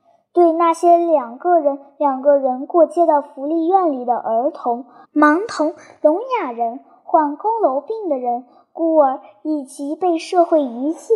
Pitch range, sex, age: 270-350 Hz, male, 10-29